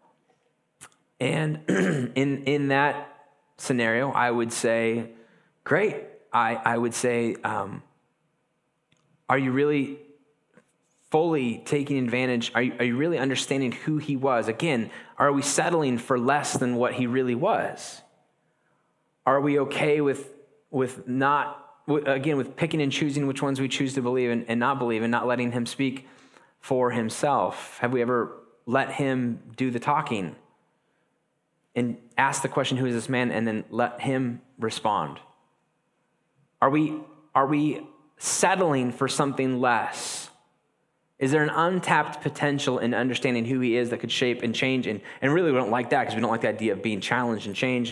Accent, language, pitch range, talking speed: American, English, 120-145 Hz, 165 wpm